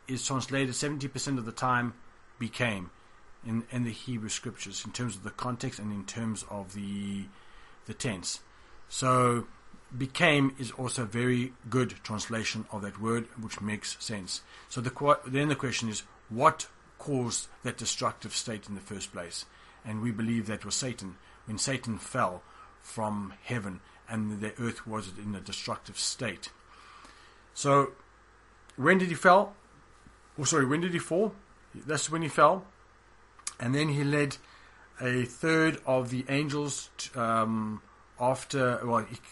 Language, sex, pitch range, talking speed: English, male, 110-135 Hz, 155 wpm